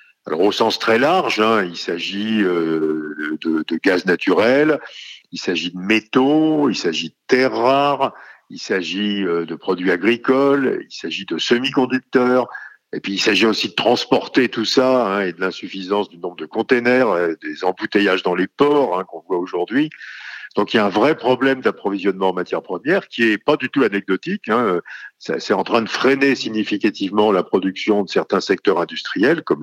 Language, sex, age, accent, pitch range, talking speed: French, male, 50-69, French, 100-140 Hz, 180 wpm